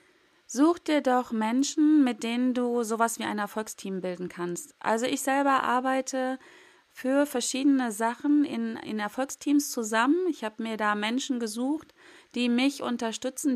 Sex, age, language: female, 30-49, German